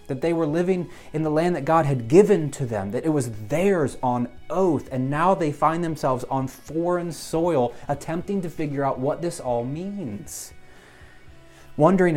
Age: 30-49